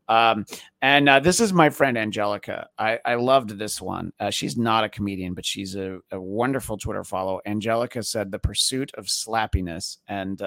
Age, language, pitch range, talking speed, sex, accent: 30-49, English, 105-155 Hz, 185 wpm, male, American